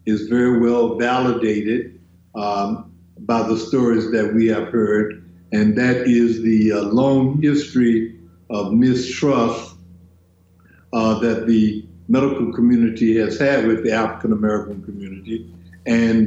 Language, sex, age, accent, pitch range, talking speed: English, male, 60-79, American, 110-135 Hz, 125 wpm